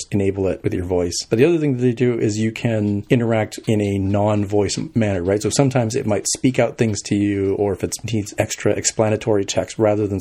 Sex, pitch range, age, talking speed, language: male, 100-120 Hz, 40-59, 230 wpm, English